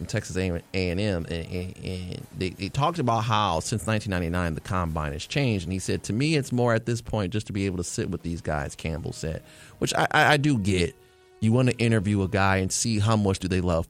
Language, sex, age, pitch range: English, male, 30-49, 90-115 Hz